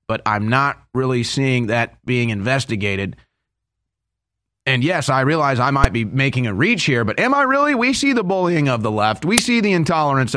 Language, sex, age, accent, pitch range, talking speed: English, male, 30-49, American, 110-140 Hz, 195 wpm